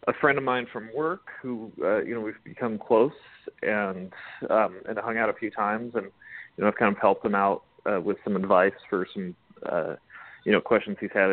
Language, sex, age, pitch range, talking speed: English, male, 30-49, 110-155 Hz, 230 wpm